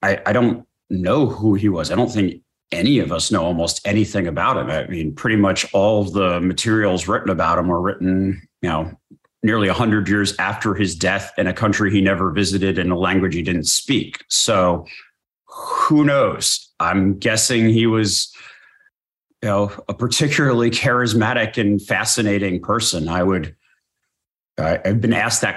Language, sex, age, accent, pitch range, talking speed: English, male, 30-49, American, 100-125 Hz, 165 wpm